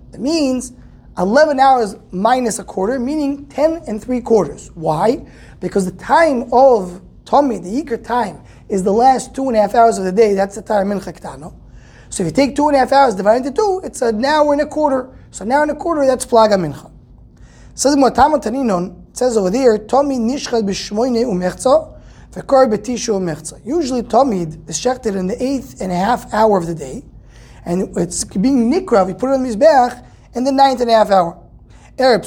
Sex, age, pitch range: male, 20-39, 195-270 Hz